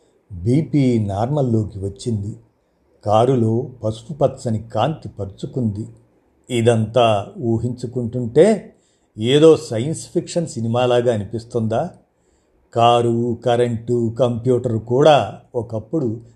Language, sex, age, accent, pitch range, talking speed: Telugu, male, 50-69, native, 110-130 Hz, 75 wpm